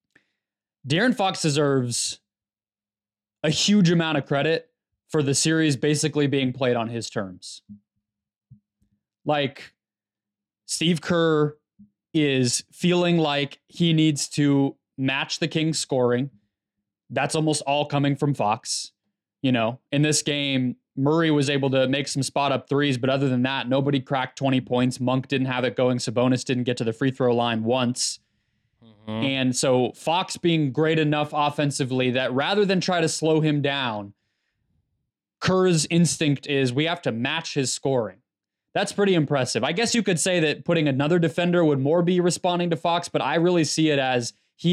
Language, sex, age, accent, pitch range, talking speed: English, male, 20-39, American, 125-155 Hz, 160 wpm